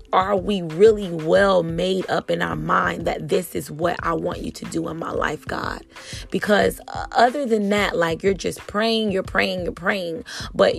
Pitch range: 175-225 Hz